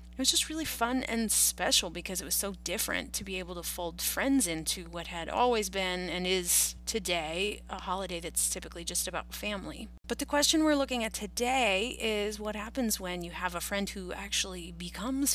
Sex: female